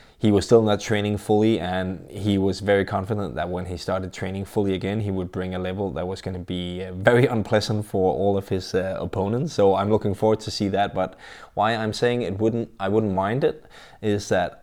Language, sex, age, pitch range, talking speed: English, male, 20-39, 95-115 Hz, 225 wpm